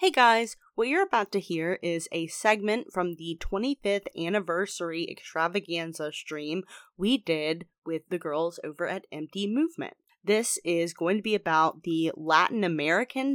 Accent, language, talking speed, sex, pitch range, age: American, English, 155 wpm, female, 160-200 Hz, 20-39